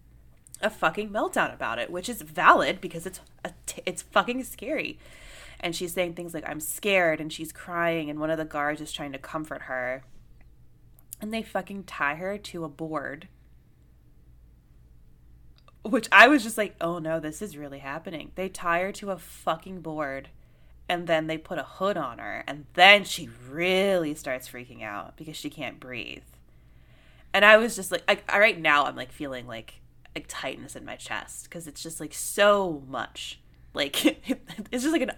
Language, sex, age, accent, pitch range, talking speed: English, female, 20-39, American, 135-205 Hz, 185 wpm